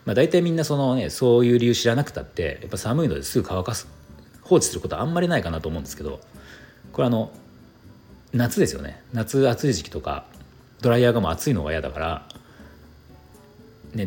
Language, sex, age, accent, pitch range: Japanese, male, 40-59, native, 80-120 Hz